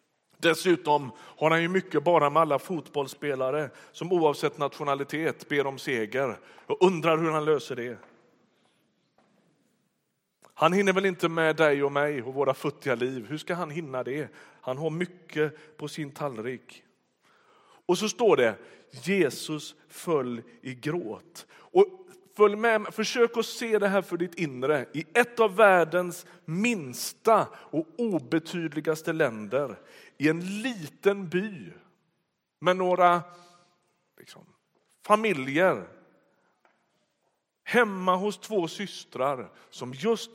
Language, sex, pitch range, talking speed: Swedish, male, 150-195 Hz, 120 wpm